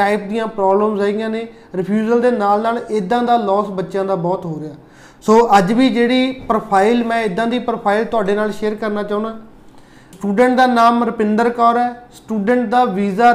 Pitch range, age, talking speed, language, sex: 210-240 Hz, 30-49, 175 wpm, Punjabi, male